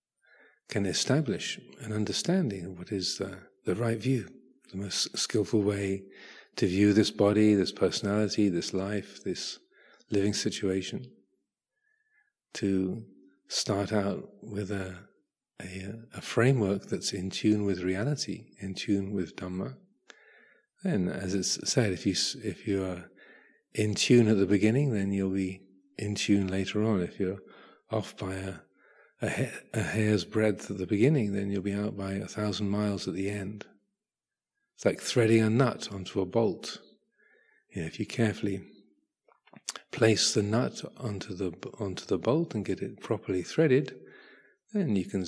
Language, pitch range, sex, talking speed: English, 95-110 Hz, male, 155 wpm